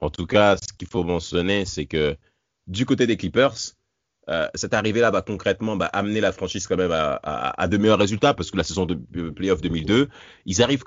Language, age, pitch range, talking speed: French, 30-49, 90-140 Hz, 220 wpm